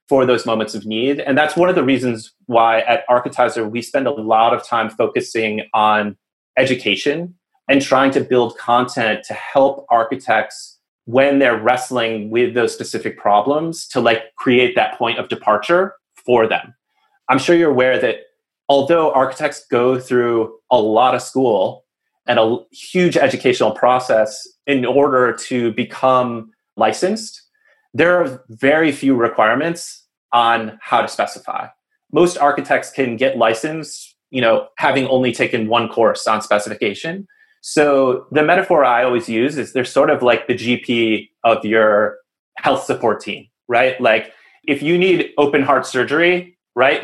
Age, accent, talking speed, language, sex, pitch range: 30-49, American, 155 wpm, English, male, 115-155 Hz